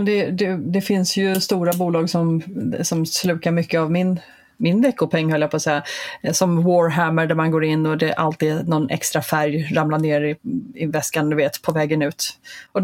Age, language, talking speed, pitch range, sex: 30-49, Swedish, 205 wpm, 165-220 Hz, female